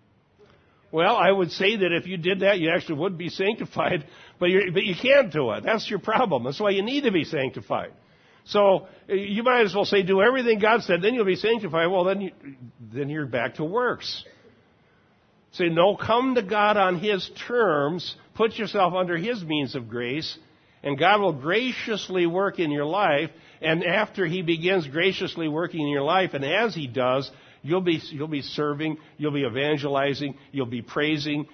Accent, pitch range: American, 145-190 Hz